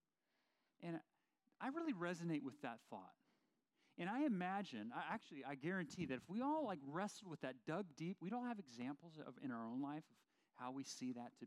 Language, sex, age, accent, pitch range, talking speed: English, male, 40-59, American, 125-195 Hz, 205 wpm